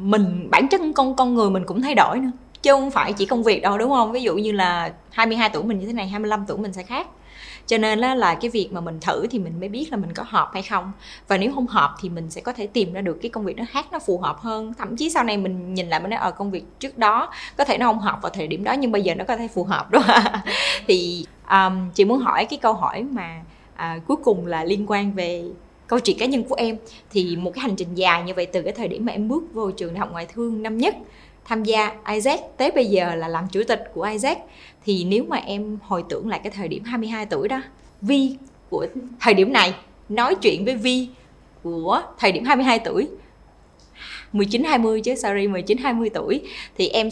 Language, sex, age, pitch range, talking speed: Vietnamese, female, 20-39, 190-250 Hz, 250 wpm